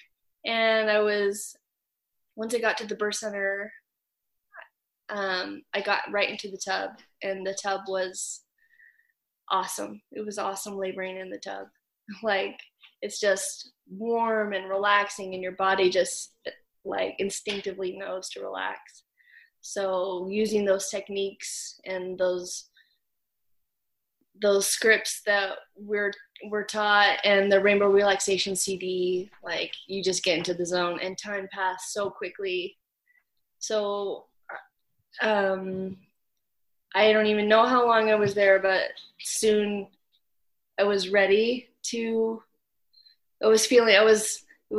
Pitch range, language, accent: 195-225 Hz, English, American